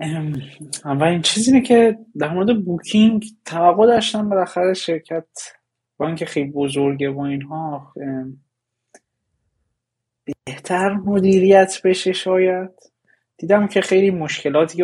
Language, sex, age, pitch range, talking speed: Persian, male, 20-39, 130-165 Hz, 95 wpm